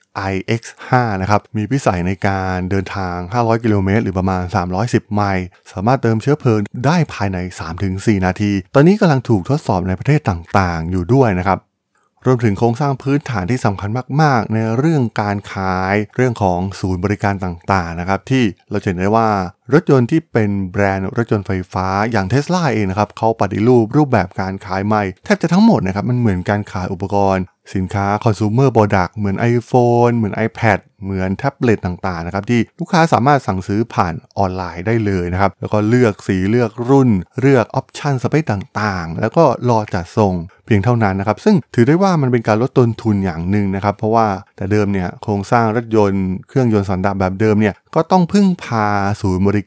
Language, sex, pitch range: Thai, male, 95-120 Hz